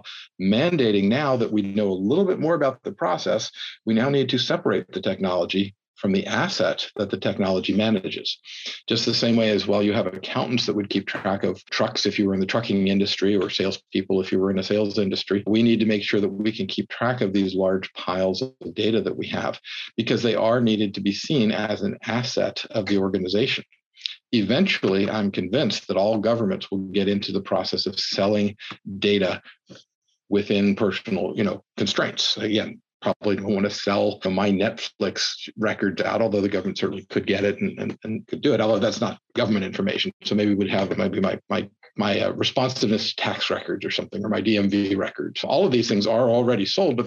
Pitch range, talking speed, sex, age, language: 100-110 Hz, 205 wpm, male, 50-69, English